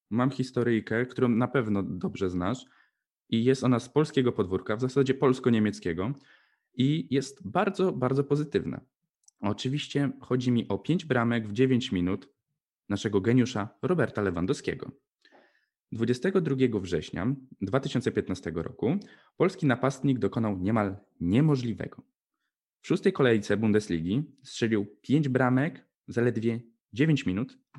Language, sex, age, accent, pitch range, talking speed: Polish, male, 20-39, native, 105-140 Hz, 115 wpm